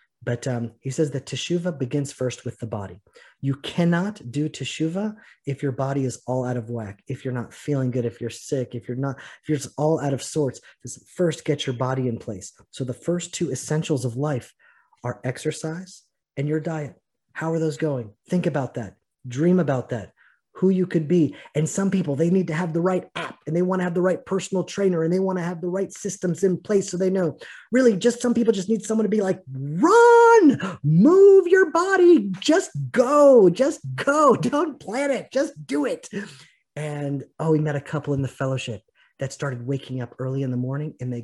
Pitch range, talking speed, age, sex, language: 130-185 Hz, 215 wpm, 30-49, male, English